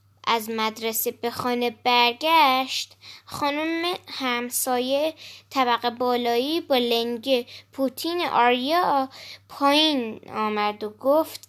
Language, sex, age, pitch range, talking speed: Persian, female, 10-29, 245-305 Hz, 90 wpm